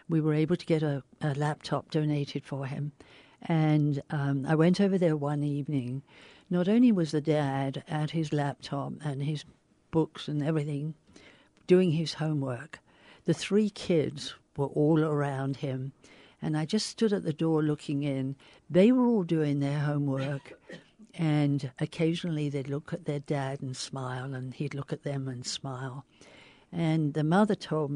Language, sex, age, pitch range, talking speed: English, female, 60-79, 135-160 Hz, 165 wpm